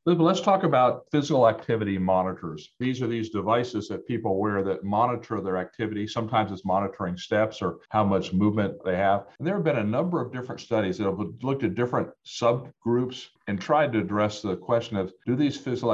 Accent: American